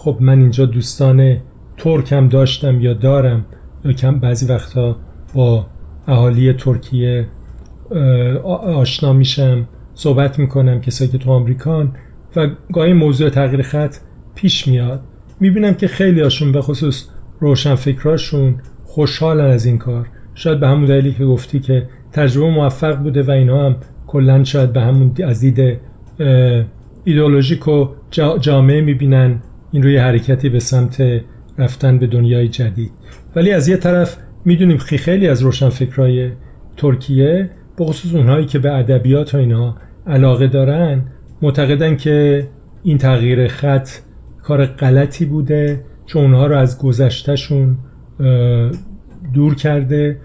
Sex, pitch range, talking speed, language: male, 125-145 Hz, 125 wpm, Persian